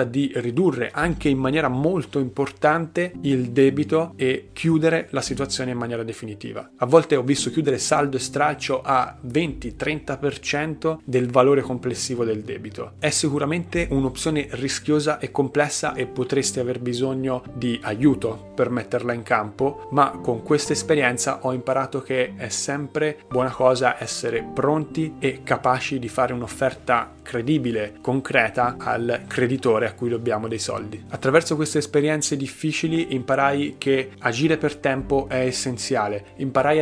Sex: male